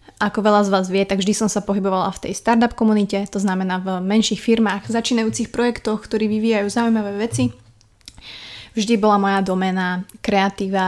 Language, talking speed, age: Slovak, 165 wpm, 20-39